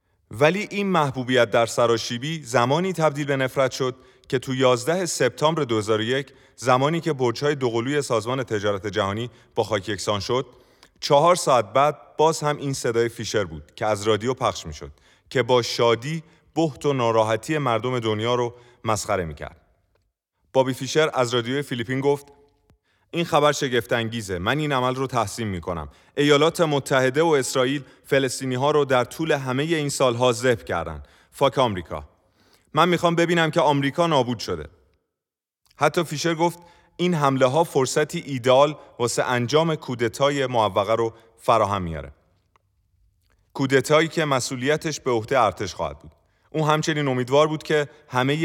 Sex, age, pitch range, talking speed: male, 30-49, 110-145 Hz, 150 wpm